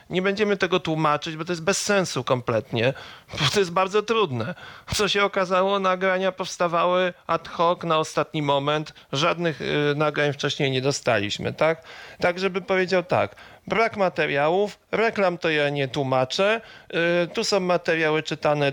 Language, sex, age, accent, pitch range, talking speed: Polish, male, 40-59, native, 145-185 Hz, 145 wpm